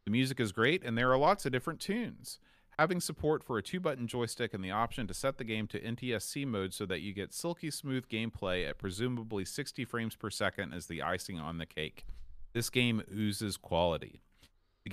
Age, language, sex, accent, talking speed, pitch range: 40-59, English, male, American, 210 wpm, 95-125 Hz